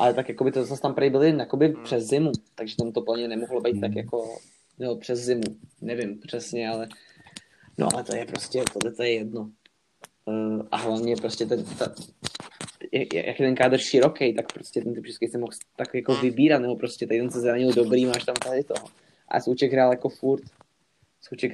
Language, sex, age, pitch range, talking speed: Czech, male, 20-39, 115-130 Hz, 190 wpm